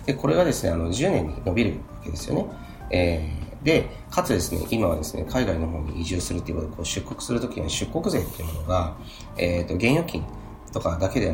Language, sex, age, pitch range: Japanese, male, 40-59, 85-115 Hz